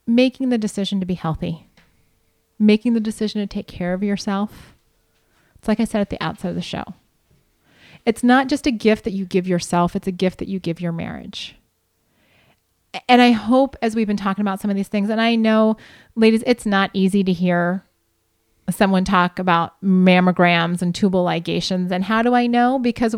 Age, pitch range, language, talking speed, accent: 30-49, 195-245 Hz, English, 195 wpm, American